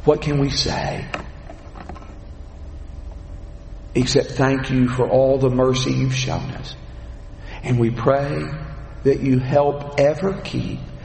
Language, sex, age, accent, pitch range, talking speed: English, male, 50-69, American, 95-135 Hz, 120 wpm